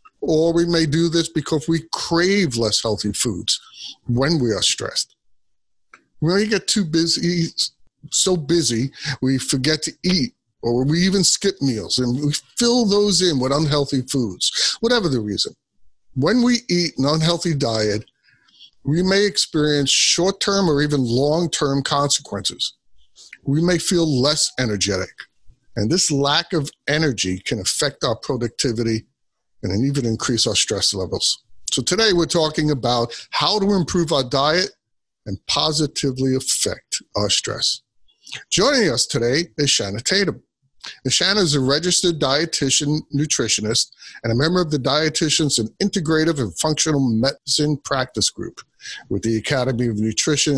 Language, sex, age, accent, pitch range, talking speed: English, male, 50-69, American, 120-170 Hz, 145 wpm